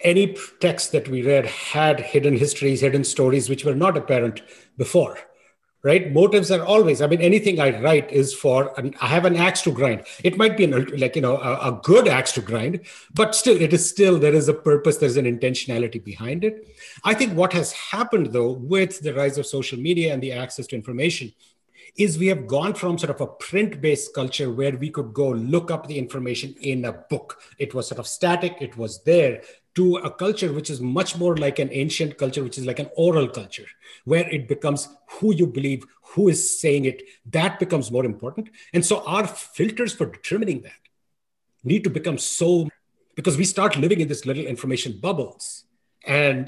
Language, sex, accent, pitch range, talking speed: English, male, Indian, 135-180 Hz, 205 wpm